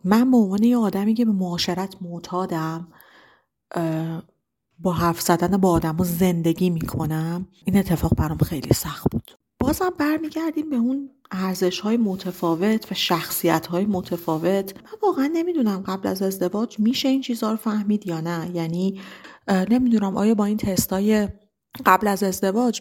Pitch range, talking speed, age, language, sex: 180-225 Hz, 140 wpm, 40-59, Persian, female